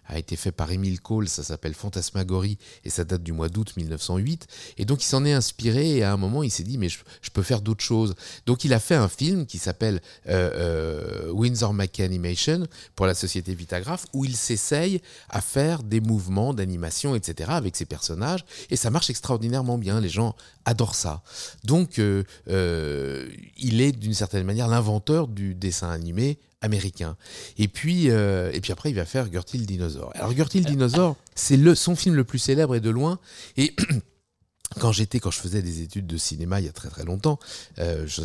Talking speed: 205 wpm